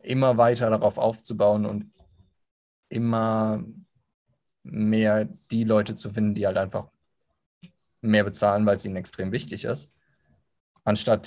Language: German